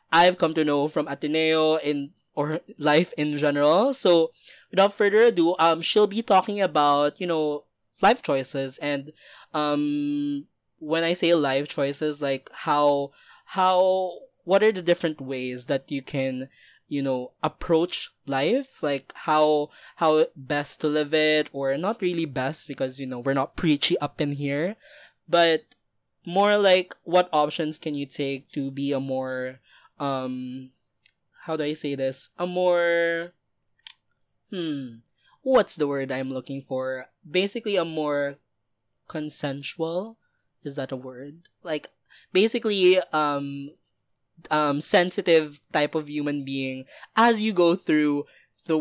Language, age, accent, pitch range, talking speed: English, 20-39, Filipino, 140-170 Hz, 140 wpm